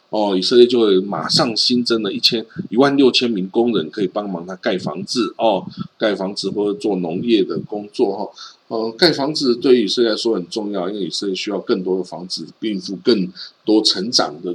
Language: Chinese